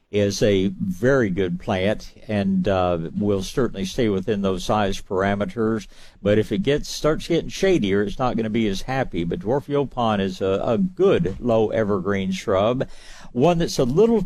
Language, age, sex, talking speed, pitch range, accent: English, 60-79, male, 175 wpm, 95-130 Hz, American